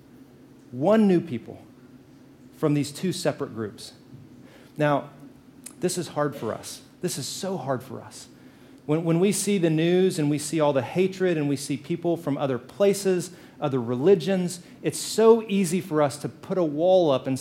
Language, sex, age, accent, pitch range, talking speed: English, male, 40-59, American, 140-190 Hz, 180 wpm